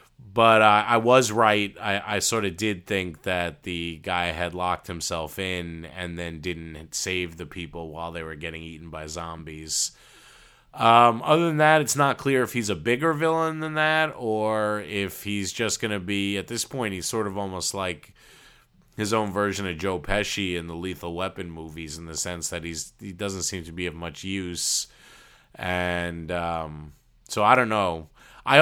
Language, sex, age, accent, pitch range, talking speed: English, male, 30-49, American, 90-115 Hz, 190 wpm